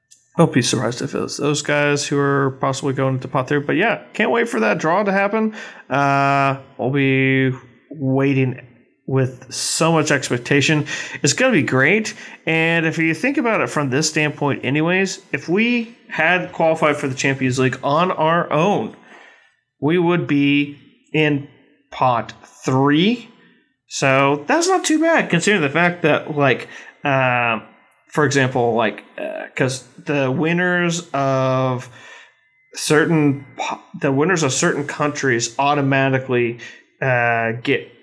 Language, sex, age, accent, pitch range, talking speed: English, male, 30-49, American, 130-155 Hz, 145 wpm